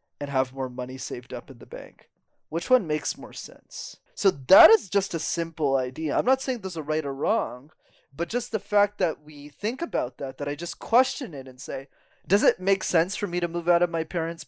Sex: male